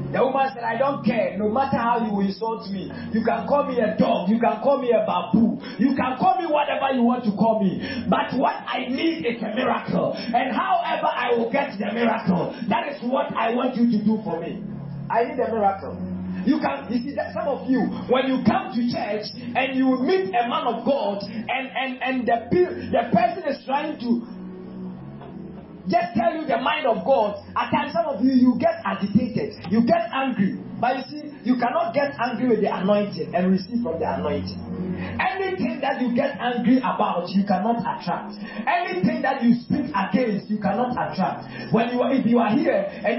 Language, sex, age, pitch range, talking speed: English, male, 40-59, 205-260 Hz, 210 wpm